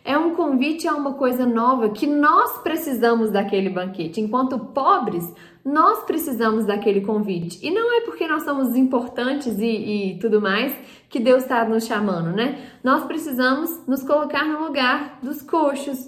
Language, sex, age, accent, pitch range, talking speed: Portuguese, female, 10-29, Brazilian, 220-275 Hz, 160 wpm